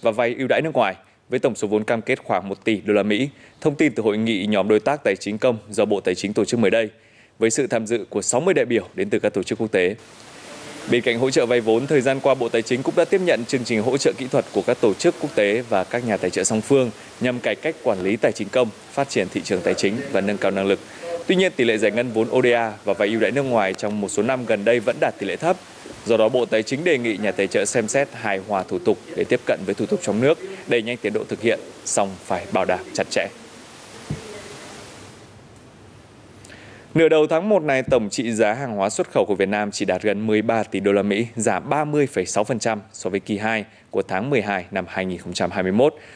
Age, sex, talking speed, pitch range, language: 20-39, male, 260 wpm, 105-125 Hz, Vietnamese